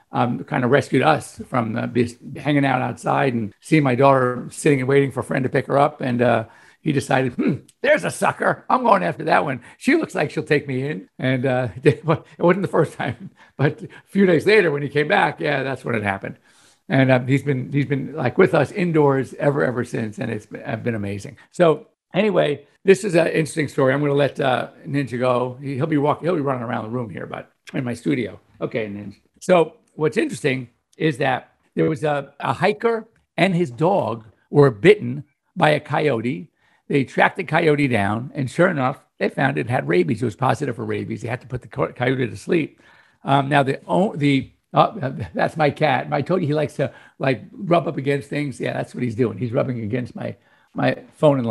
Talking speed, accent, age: 215 wpm, American, 60-79